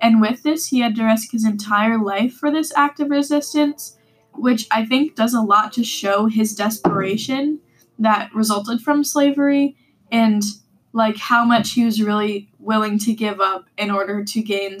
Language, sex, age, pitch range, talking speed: English, female, 10-29, 200-230 Hz, 180 wpm